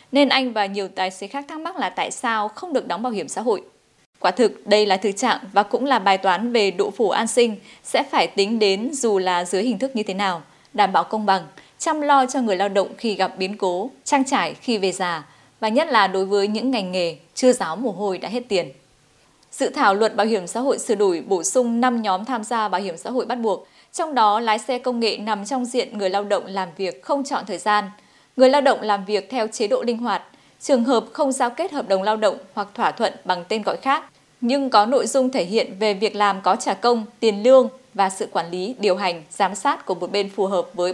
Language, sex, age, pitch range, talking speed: Vietnamese, female, 20-39, 195-255 Hz, 255 wpm